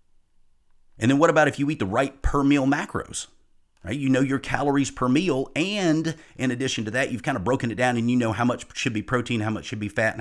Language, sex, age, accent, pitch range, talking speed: English, male, 40-59, American, 105-135 Hz, 260 wpm